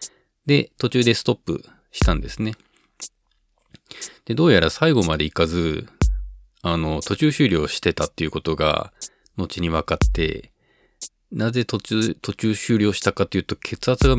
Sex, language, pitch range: male, Japanese, 80-115 Hz